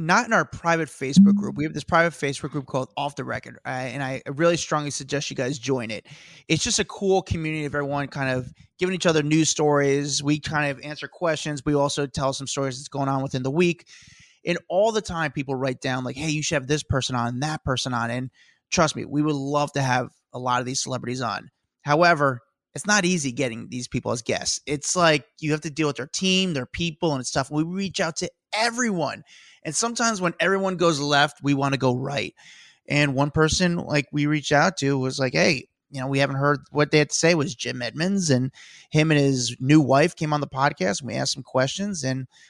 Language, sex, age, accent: English, male, 20-39, American